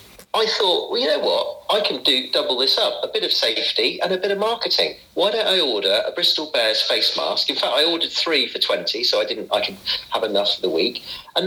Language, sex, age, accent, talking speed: English, male, 40-59, British, 250 wpm